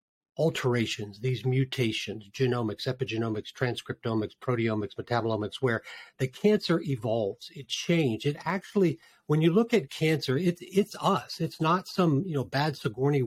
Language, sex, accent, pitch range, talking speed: English, male, American, 120-155 Hz, 140 wpm